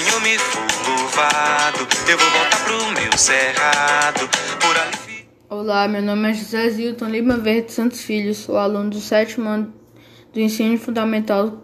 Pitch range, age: 205-235 Hz, 10-29